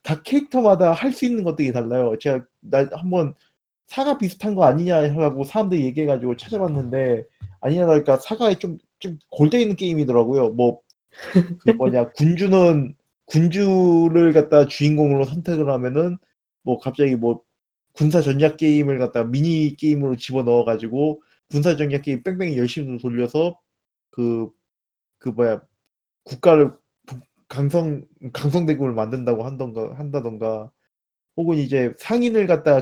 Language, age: Korean, 20-39